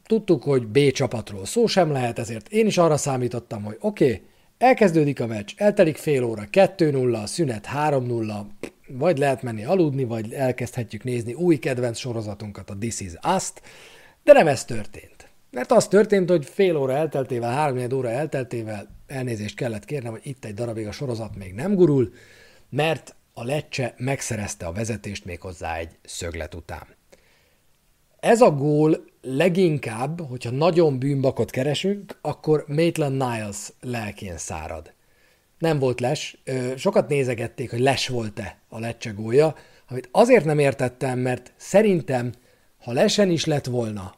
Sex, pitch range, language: male, 115-155 Hz, Hungarian